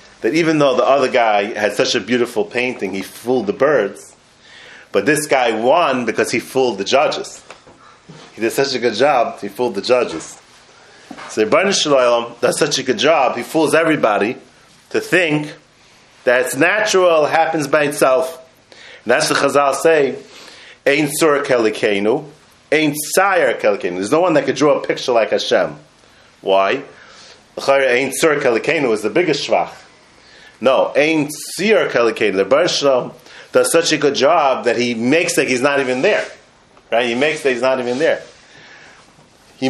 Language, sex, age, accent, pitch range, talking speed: English, male, 30-49, American, 125-160 Hz, 165 wpm